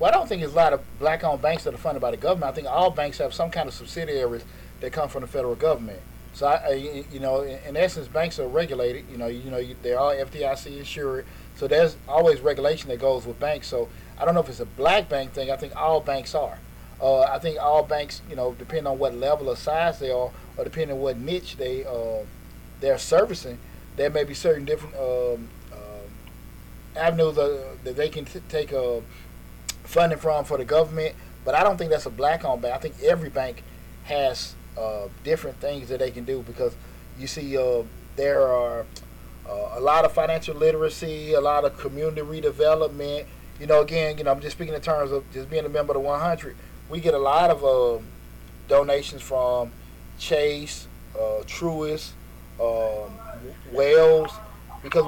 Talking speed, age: 205 wpm, 40-59